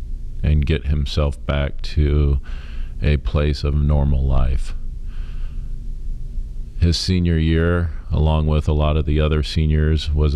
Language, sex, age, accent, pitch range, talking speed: English, male, 40-59, American, 70-80 Hz, 125 wpm